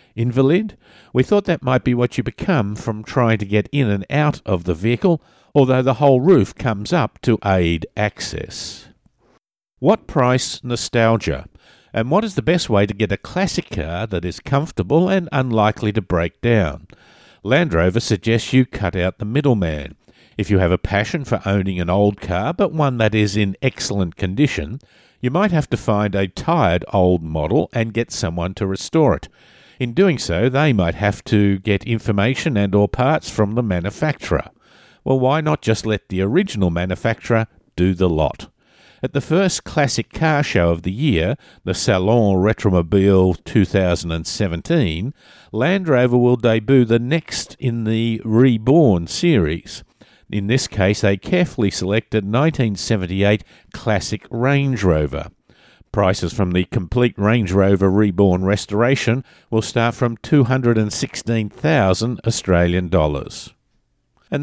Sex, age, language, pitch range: male, 50-69, English, 95-130 Hz